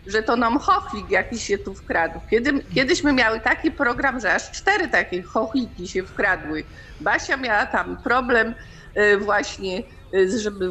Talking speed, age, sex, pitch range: 145 wpm, 50-69, female, 210-265 Hz